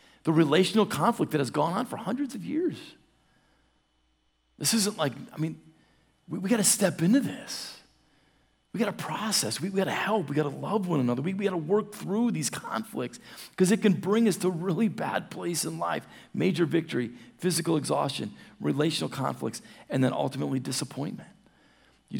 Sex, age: male, 40-59